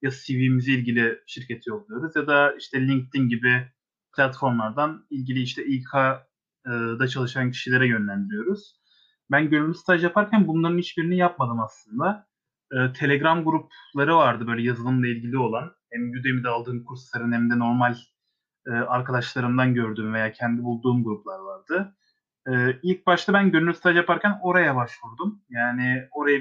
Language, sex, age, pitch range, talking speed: Turkish, male, 30-49, 125-165 Hz, 135 wpm